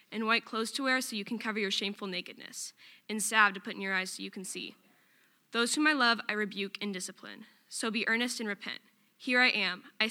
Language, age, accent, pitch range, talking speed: English, 10-29, American, 150-220 Hz, 235 wpm